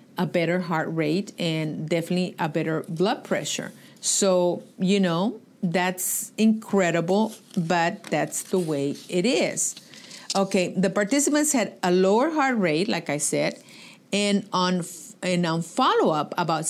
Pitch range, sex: 170-220 Hz, female